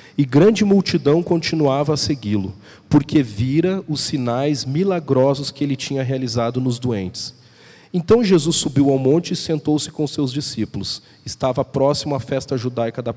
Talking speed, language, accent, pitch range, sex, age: 150 wpm, Portuguese, Brazilian, 125-155 Hz, male, 40-59